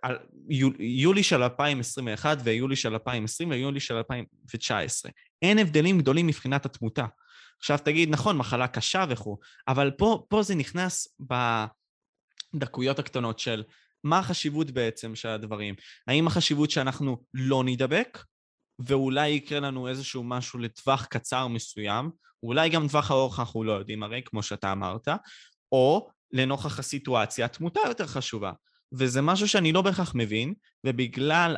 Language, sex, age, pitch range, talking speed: Hebrew, male, 20-39, 115-150 Hz, 135 wpm